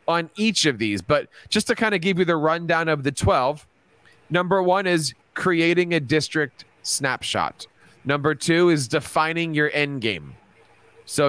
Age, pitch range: 30-49, 135-175 Hz